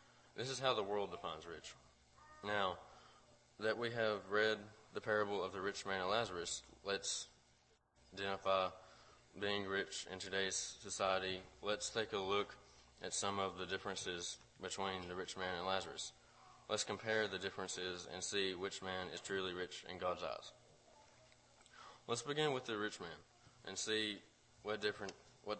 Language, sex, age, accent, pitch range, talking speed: English, male, 20-39, American, 95-110 Hz, 155 wpm